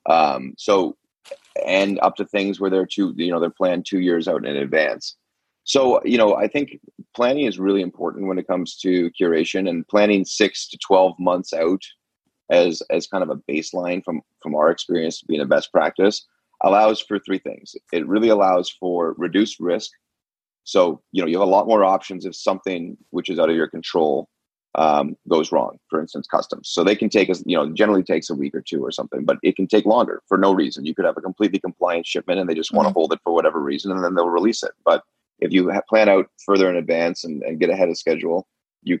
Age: 30-49